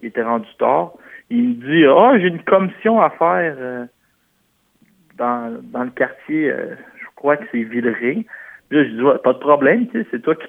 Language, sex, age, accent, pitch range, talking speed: French, male, 60-79, French, 130-180 Hz, 210 wpm